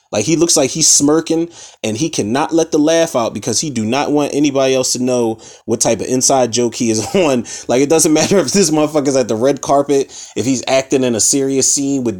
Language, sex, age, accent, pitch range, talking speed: English, male, 20-39, American, 115-150 Hz, 240 wpm